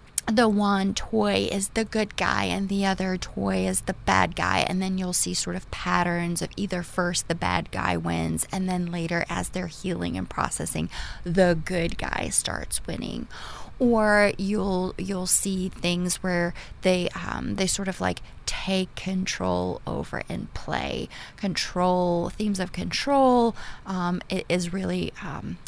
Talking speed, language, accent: 160 wpm, English, American